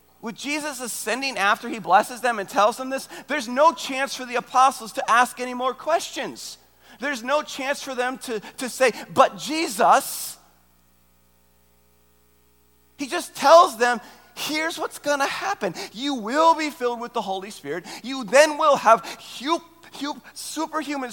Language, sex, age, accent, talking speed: English, male, 30-49, American, 155 wpm